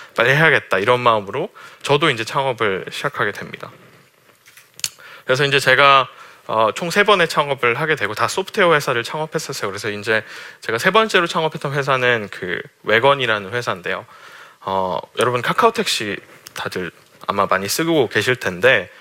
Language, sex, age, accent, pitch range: Korean, male, 20-39, native, 115-165 Hz